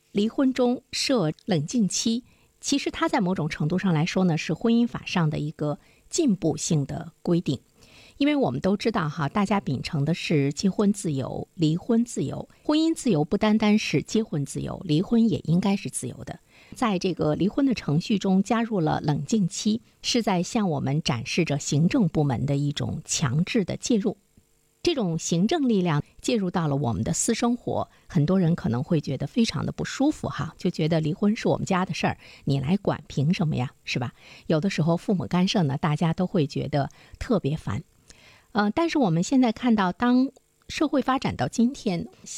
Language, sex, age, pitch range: Chinese, female, 50-69, 155-225 Hz